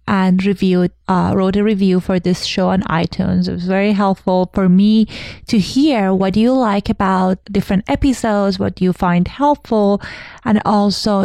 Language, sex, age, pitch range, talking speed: English, female, 20-39, 185-225 Hz, 165 wpm